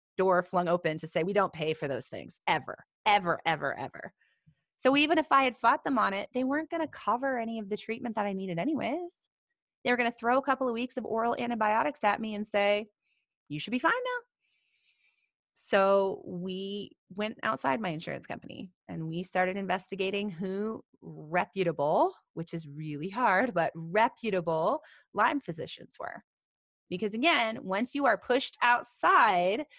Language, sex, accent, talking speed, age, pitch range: English, female, American, 175 wpm, 30-49, 185-270 Hz